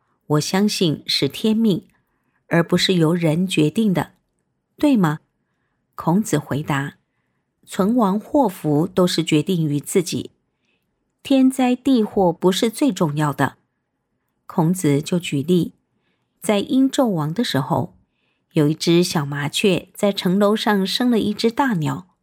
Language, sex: Chinese, female